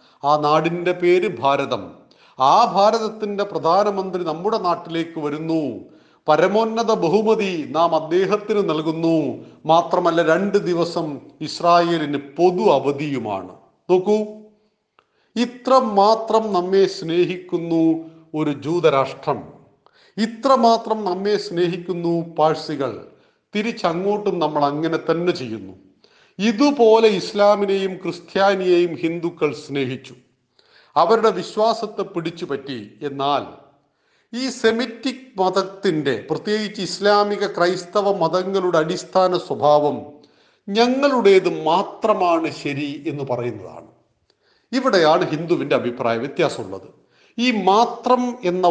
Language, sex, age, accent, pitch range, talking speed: Malayalam, male, 40-59, native, 155-205 Hz, 85 wpm